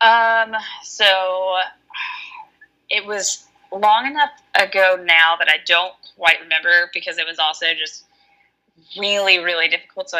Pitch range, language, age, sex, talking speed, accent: 160-195 Hz, English, 20-39, female, 130 wpm, American